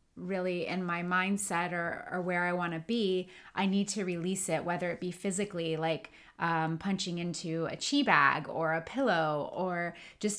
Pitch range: 165-195 Hz